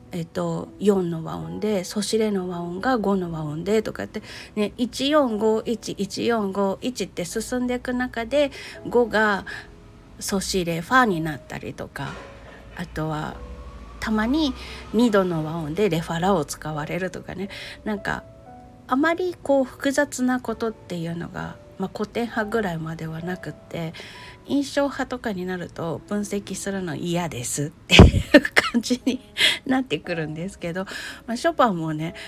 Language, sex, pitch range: Japanese, female, 170-230 Hz